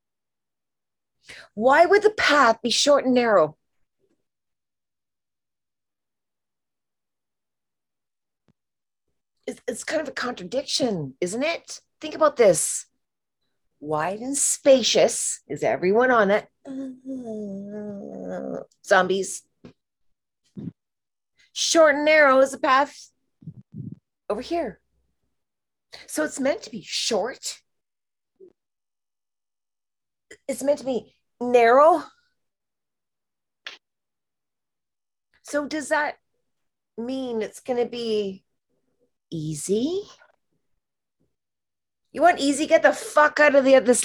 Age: 40-59